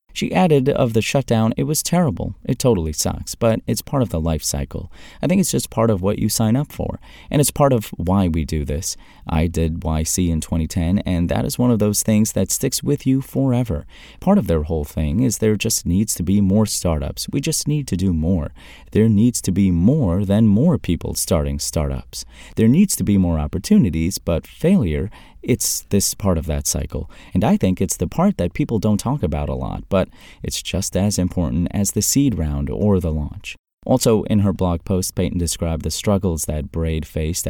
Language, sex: English, male